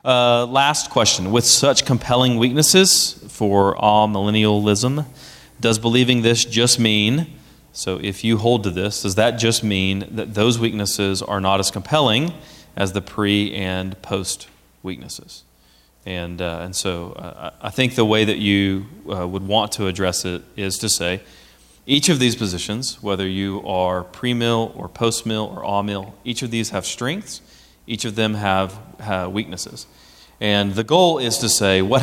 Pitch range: 100-120 Hz